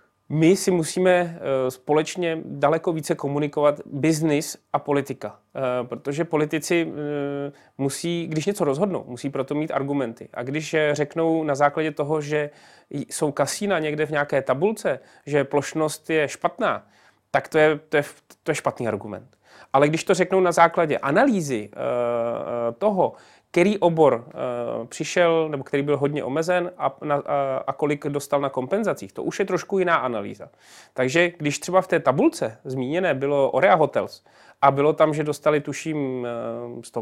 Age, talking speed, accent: 30-49, 150 wpm, native